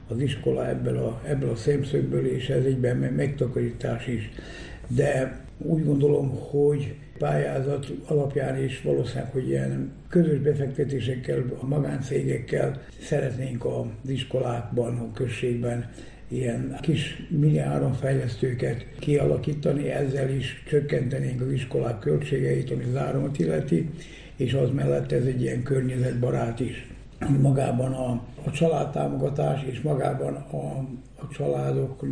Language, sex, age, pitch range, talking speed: Hungarian, male, 60-79, 125-145 Hz, 115 wpm